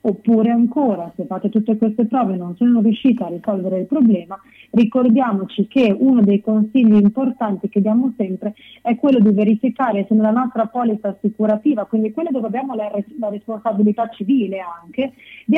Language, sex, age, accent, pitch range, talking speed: Italian, female, 30-49, native, 210-255 Hz, 160 wpm